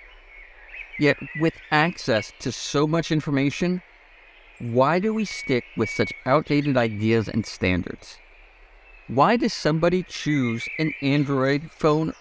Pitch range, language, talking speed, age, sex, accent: 115-155 Hz, English, 120 wpm, 50-69, male, American